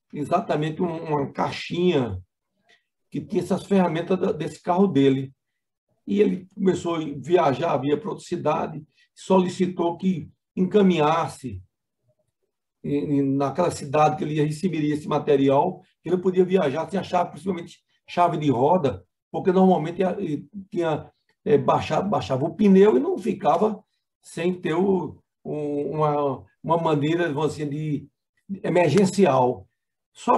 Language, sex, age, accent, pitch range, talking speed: Portuguese, male, 60-79, Brazilian, 145-190 Hz, 120 wpm